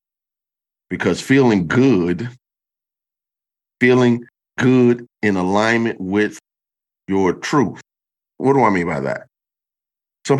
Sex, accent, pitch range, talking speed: male, American, 95-120 Hz, 100 wpm